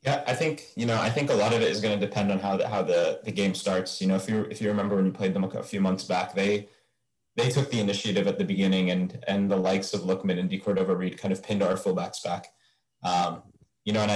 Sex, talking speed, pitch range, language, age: male, 275 wpm, 95-115 Hz, English, 20-39